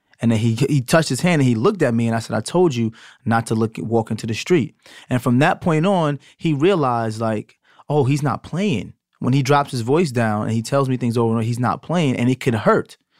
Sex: male